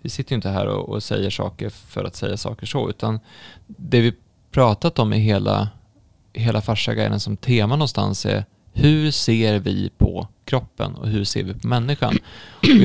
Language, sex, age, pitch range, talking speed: Swedish, male, 20-39, 105-125 Hz, 180 wpm